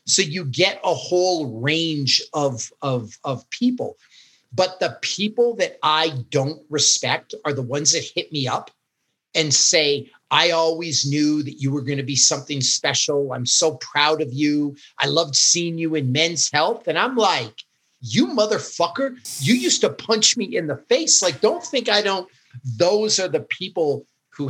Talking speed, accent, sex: 175 wpm, American, male